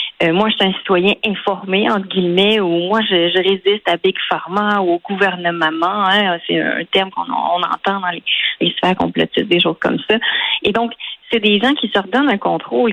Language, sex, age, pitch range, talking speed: French, female, 30-49, 180-230 Hz, 215 wpm